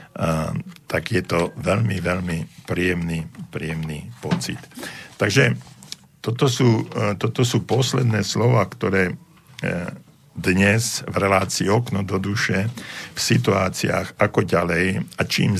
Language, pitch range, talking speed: Slovak, 90-105 Hz, 105 wpm